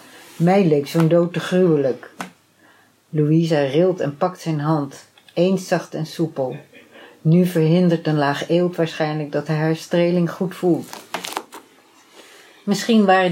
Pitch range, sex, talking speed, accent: 150-180 Hz, female, 130 wpm, Dutch